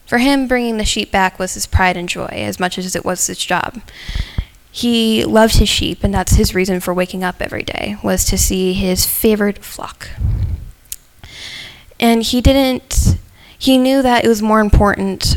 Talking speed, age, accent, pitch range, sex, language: 185 wpm, 10-29, American, 185-220 Hz, female, English